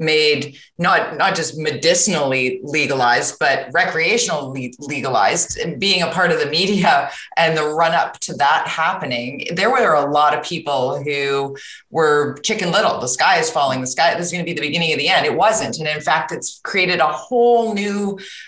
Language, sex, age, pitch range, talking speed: English, female, 30-49, 145-185 Hz, 190 wpm